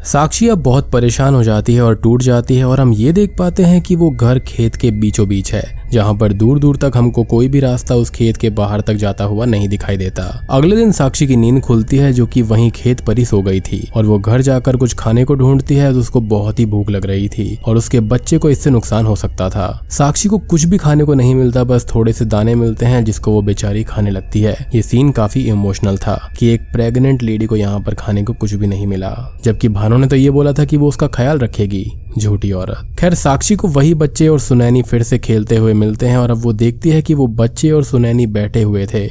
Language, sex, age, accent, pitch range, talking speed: Hindi, male, 20-39, native, 110-135 Hz, 245 wpm